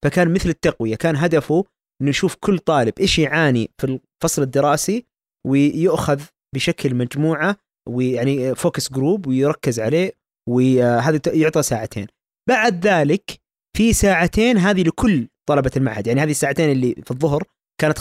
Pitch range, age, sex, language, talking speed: 130-170 Hz, 20-39, male, Arabic, 135 wpm